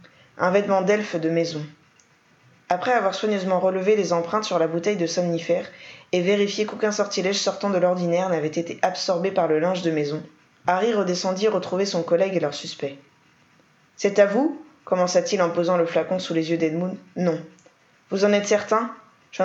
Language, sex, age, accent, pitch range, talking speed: French, female, 20-39, French, 170-200 Hz, 175 wpm